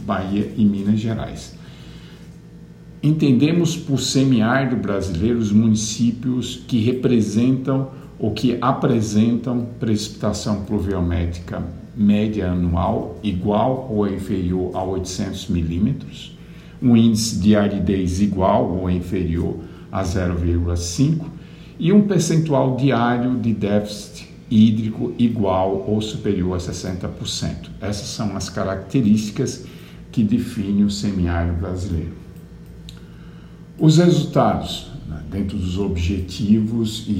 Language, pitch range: Portuguese, 95-125 Hz